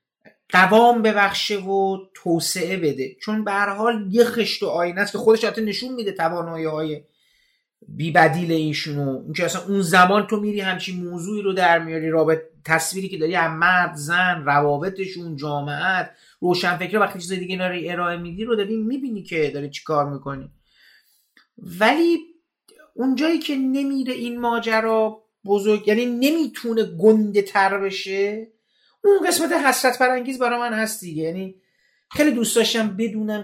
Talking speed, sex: 140 wpm, male